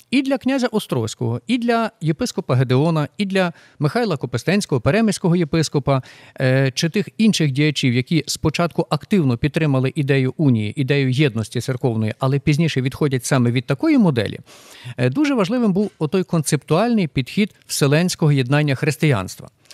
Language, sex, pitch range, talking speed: Ukrainian, male, 130-170 Hz, 130 wpm